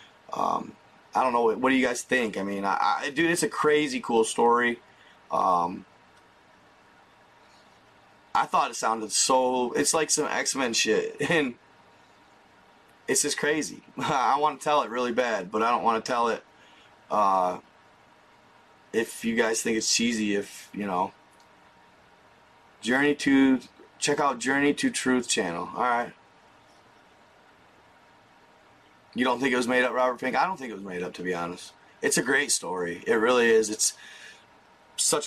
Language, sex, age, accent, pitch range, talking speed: English, male, 30-49, American, 110-145 Hz, 165 wpm